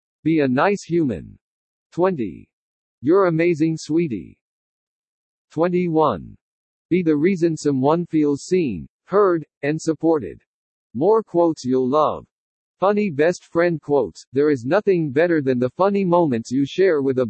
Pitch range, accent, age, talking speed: 135-175 Hz, American, 50-69, 130 wpm